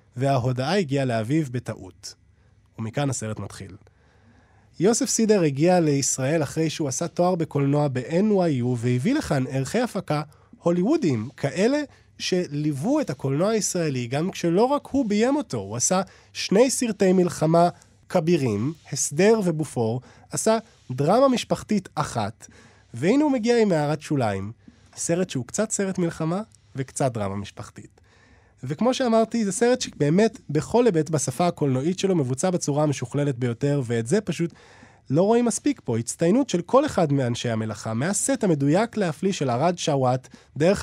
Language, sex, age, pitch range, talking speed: Hebrew, male, 20-39, 130-195 Hz, 135 wpm